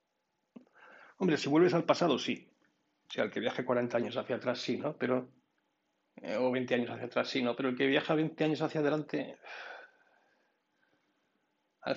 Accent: Spanish